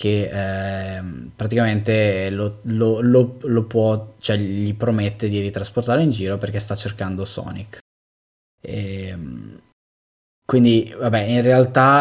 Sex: male